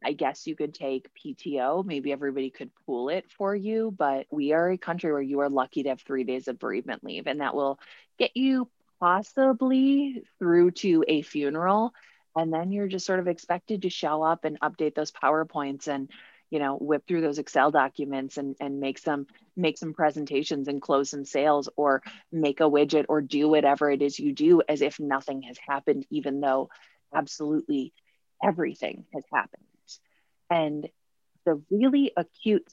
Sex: female